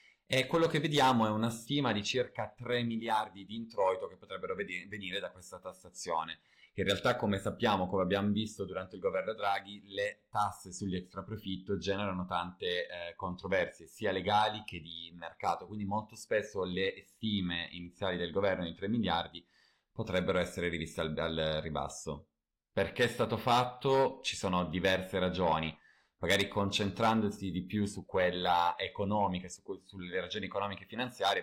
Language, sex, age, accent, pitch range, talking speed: Italian, male, 30-49, native, 90-105 Hz, 155 wpm